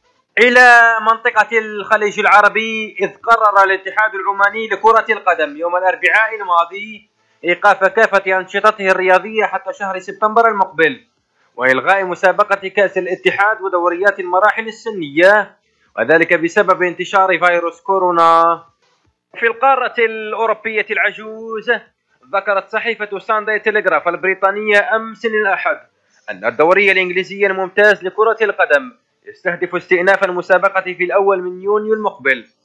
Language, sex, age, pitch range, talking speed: Arabic, male, 30-49, 175-210 Hz, 105 wpm